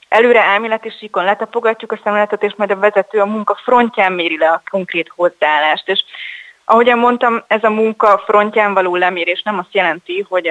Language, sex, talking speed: Hungarian, female, 185 wpm